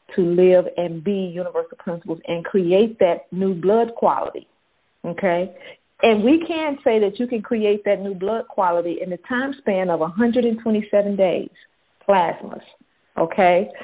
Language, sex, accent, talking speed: English, female, American, 150 wpm